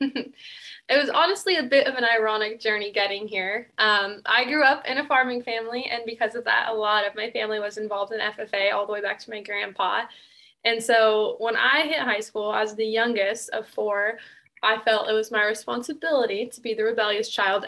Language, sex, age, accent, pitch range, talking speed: English, female, 10-29, American, 215-260 Hz, 210 wpm